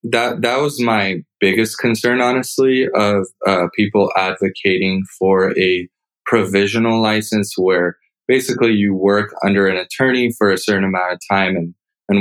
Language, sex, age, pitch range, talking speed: English, male, 20-39, 95-110 Hz, 145 wpm